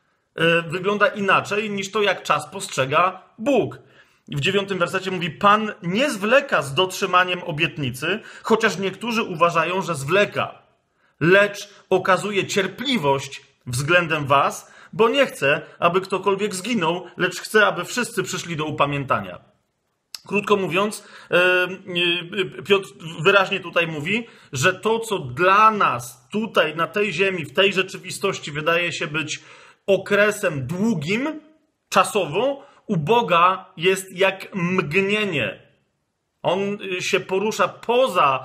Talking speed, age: 115 wpm, 40-59